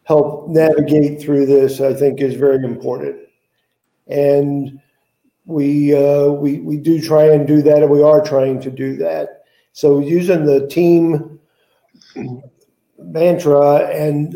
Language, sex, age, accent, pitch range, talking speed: English, male, 50-69, American, 140-160 Hz, 135 wpm